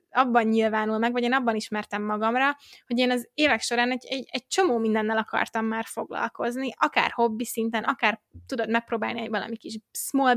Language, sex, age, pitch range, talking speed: Hungarian, female, 20-39, 220-260 Hz, 180 wpm